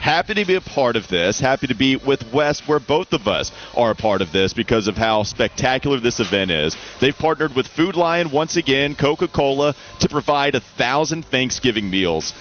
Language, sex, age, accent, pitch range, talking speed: English, male, 30-49, American, 95-130 Hz, 205 wpm